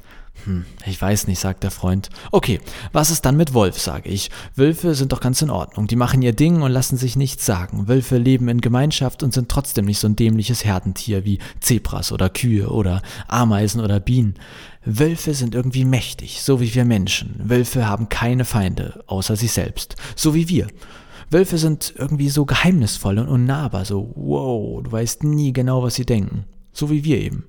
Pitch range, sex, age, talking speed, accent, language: 105-135 Hz, male, 40-59, 190 wpm, German, German